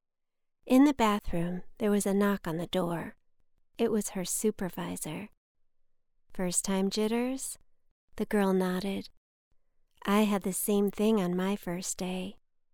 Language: English